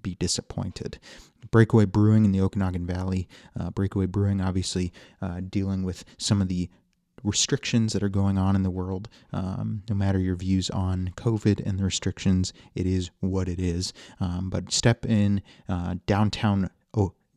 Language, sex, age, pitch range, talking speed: English, male, 30-49, 90-105 Hz, 160 wpm